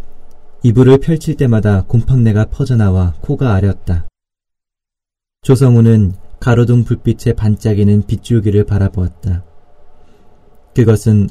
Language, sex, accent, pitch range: Korean, male, native, 95-120 Hz